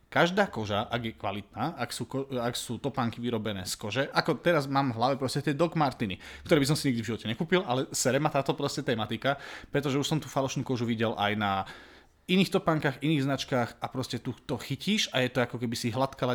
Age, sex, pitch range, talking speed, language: 30-49, male, 115-145 Hz, 220 wpm, Slovak